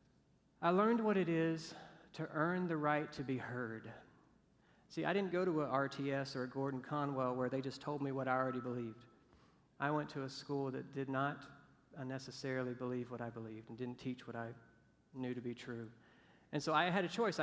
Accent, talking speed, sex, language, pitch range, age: American, 205 wpm, male, English, 130-170 Hz, 40-59